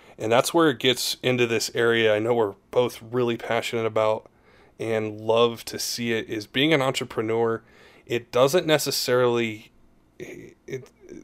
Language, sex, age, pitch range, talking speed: English, male, 20-39, 110-125 Hz, 150 wpm